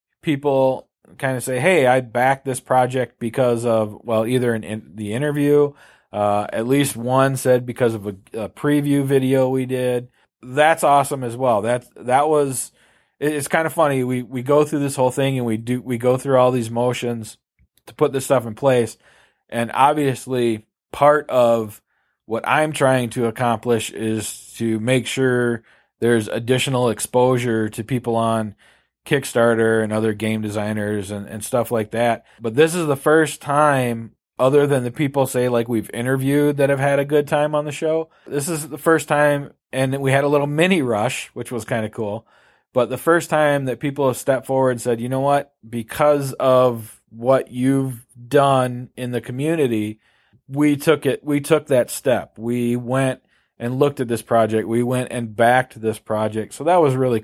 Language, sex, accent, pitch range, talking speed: English, male, American, 115-140 Hz, 185 wpm